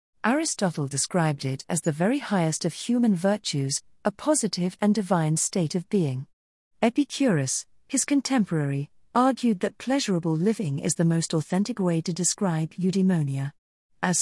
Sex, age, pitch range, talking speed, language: female, 40-59, 155-210 Hz, 140 wpm, English